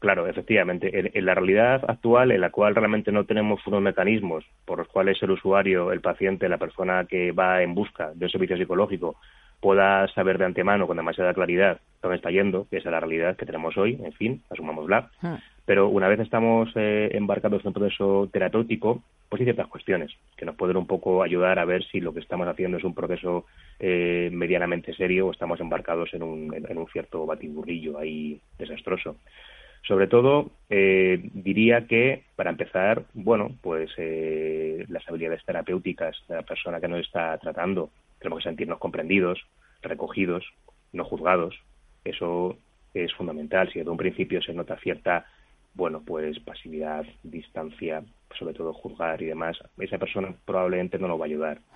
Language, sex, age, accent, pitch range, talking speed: English, male, 20-39, Spanish, 85-100 Hz, 175 wpm